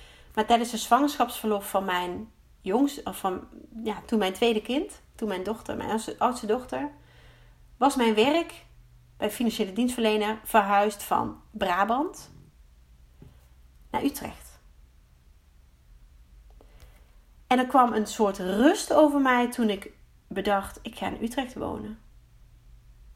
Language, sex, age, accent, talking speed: Dutch, female, 30-49, Dutch, 120 wpm